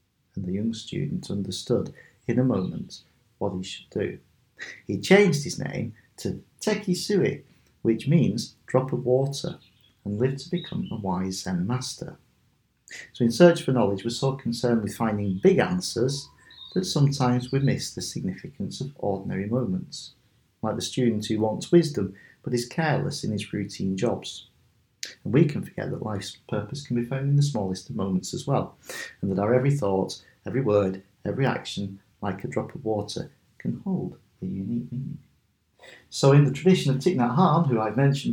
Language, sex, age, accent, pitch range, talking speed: English, male, 40-59, British, 110-145 Hz, 175 wpm